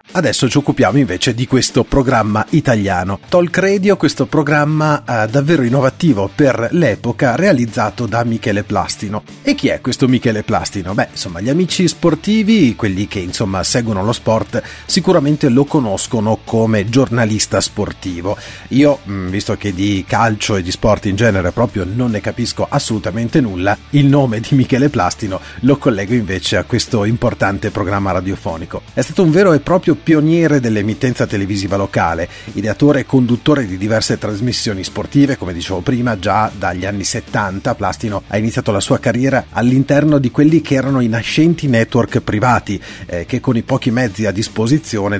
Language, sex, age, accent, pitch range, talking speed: Italian, male, 40-59, native, 100-140 Hz, 160 wpm